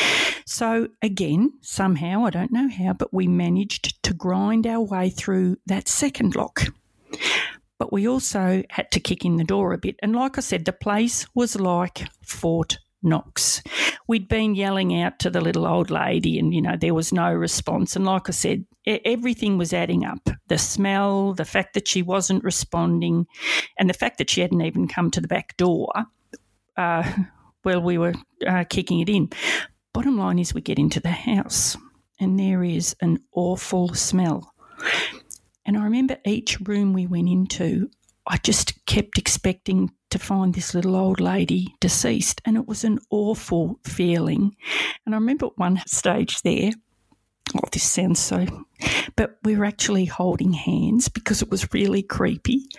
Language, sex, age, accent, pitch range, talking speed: English, female, 50-69, Australian, 175-215 Hz, 170 wpm